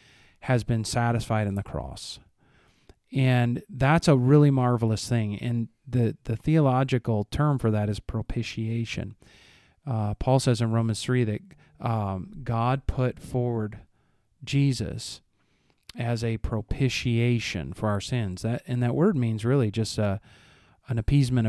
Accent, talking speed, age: American, 135 wpm, 40-59